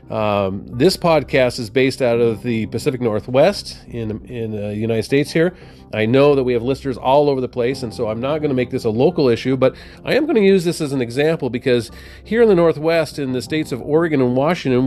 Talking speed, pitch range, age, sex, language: 240 wpm, 115-150 Hz, 40-59, male, English